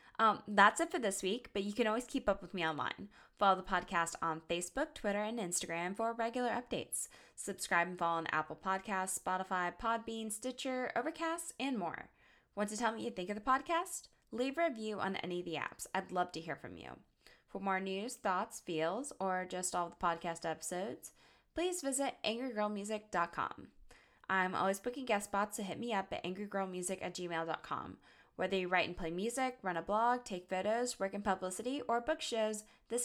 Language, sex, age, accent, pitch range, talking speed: English, female, 10-29, American, 185-245 Hz, 195 wpm